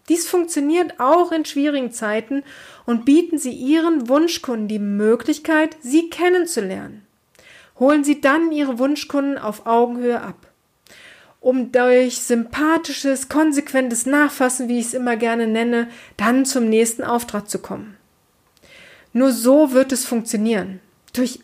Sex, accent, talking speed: female, German, 130 wpm